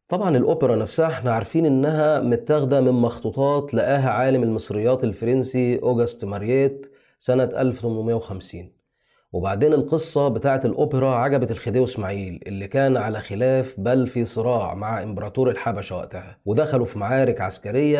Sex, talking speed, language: male, 130 wpm, Arabic